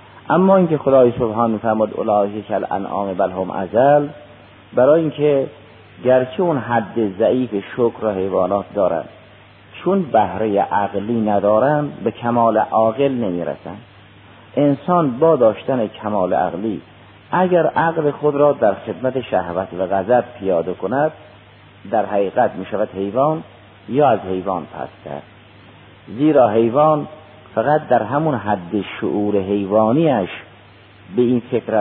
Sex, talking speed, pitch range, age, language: male, 120 wpm, 100-125 Hz, 50-69, Persian